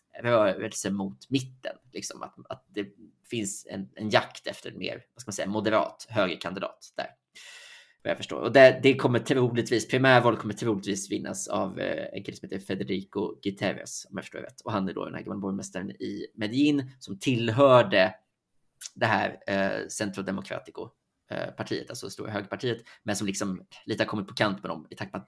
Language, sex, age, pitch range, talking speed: Swedish, male, 20-39, 100-130 Hz, 190 wpm